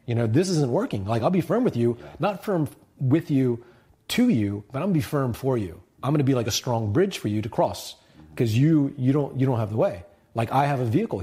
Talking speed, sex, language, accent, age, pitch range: 275 wpm, male, English, American, 30-49, 115-150 Hz